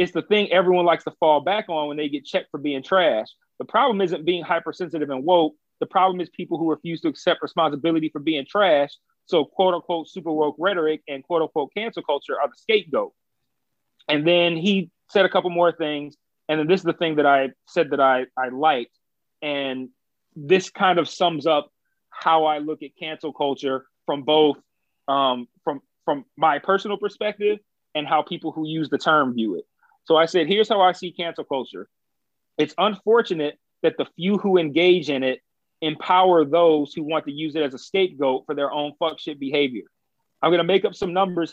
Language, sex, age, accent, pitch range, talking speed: English, male, 30-49, American, 150-190 Hz, 200 wpm